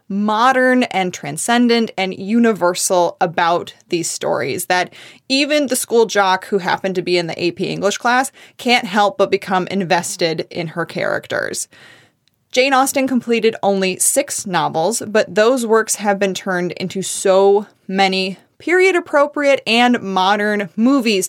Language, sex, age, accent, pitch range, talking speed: English, female, 20-39, American, 185-245 Hz, 140 wpm